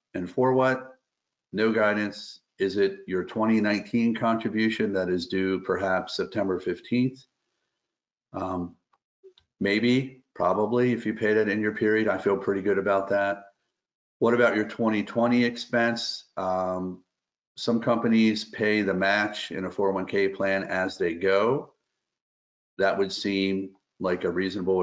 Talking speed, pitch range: 135 wpm, 95-110 Hz